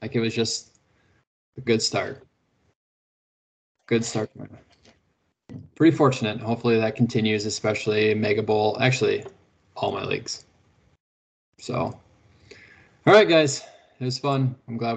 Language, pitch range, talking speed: English, 110-130 Hz, 120 wpm